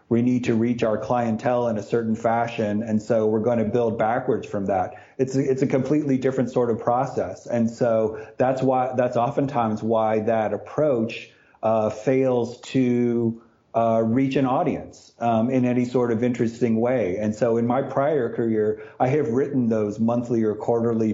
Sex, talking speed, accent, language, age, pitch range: male, 180 wpm, American, English, 40-59, 110-125 Hz